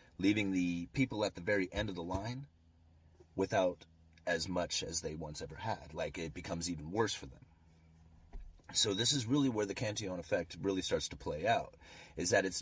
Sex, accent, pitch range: male, American, 80-100 Hz